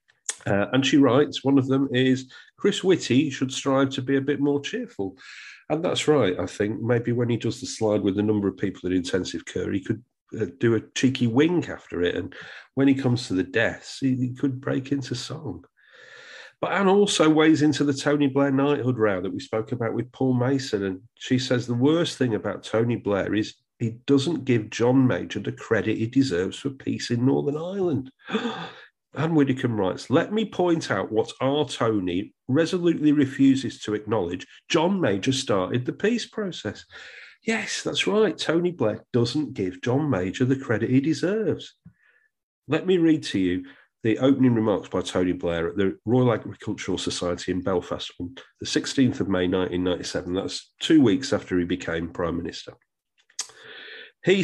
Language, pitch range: English, 110-145 Hz